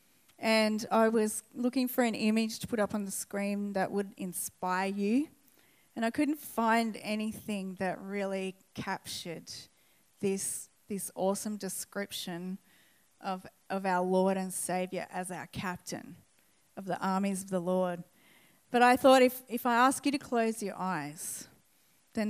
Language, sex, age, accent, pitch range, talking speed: English, female, 30-49, Australian, 185-225 Hz, 155 wpm